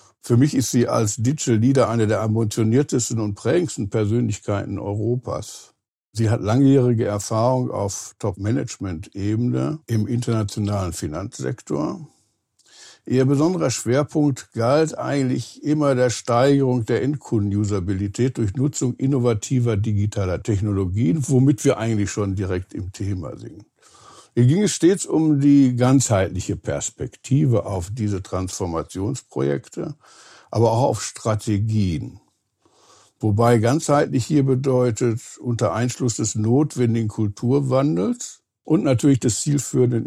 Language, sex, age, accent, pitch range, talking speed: German, male, 60-79, German, 105-130 Hz, 110 wpm